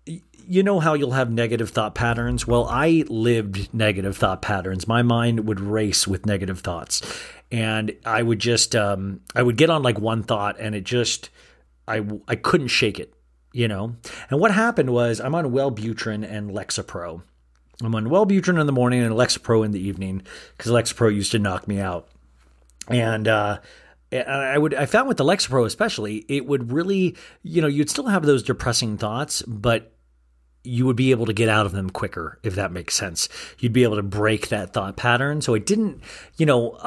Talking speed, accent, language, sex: 195 wpm, American, English, male